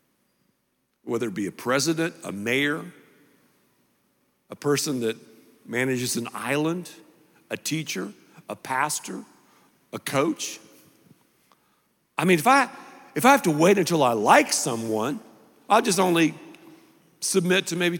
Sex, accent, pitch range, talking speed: male, American, 145-205 Hz, 125 wpm